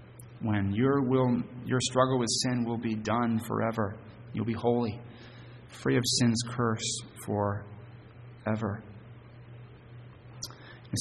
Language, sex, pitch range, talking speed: English, male, 110-125 Hz, 115 wpm